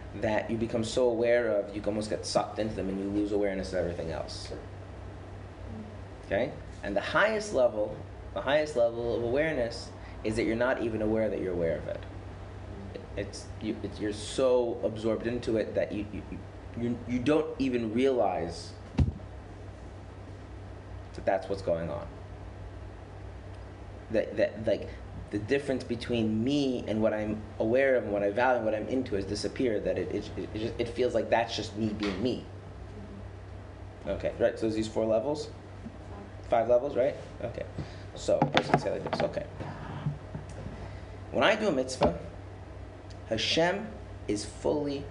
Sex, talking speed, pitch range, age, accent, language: male, 160 wpm, 95-110 Hz, 30-49, American, English